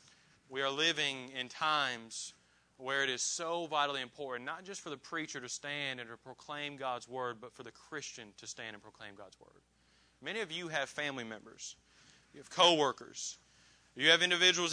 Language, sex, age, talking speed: English, male, 30-49, 185 wpm